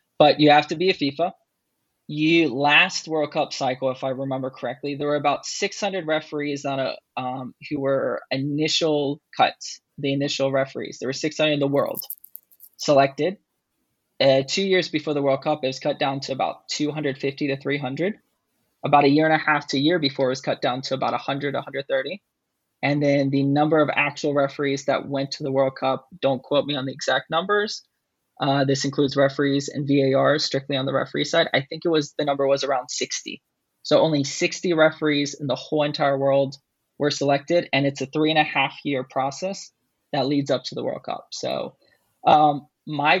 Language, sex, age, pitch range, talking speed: English, male, 20-39, 135-150 Hz, 195 wpm